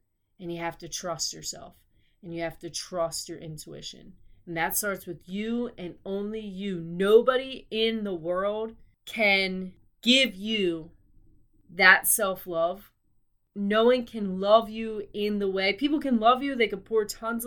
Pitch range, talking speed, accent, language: 175-230 Hz, 160 wpm, American, English